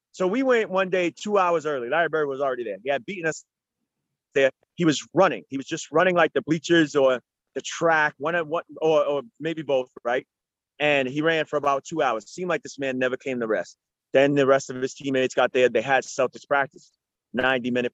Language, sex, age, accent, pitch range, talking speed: English, male, 30-49, American, 130-165 Hz, 225 wpm